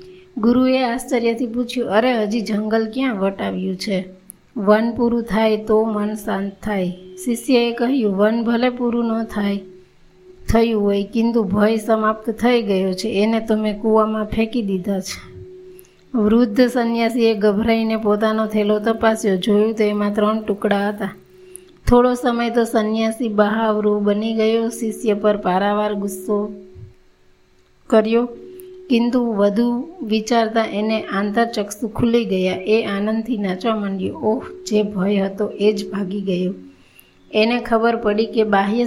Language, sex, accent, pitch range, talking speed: Gujarati, female, native, 205-235 Hz, 65 wpm